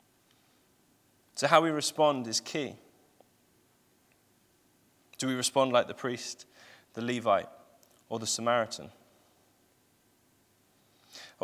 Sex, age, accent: male, 20-39, British